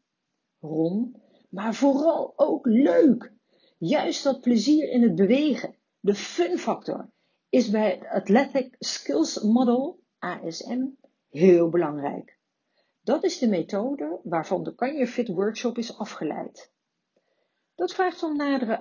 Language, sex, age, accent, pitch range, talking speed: Dutch, female, 50-69, Dutch, 195-275 Hz, 115 wpm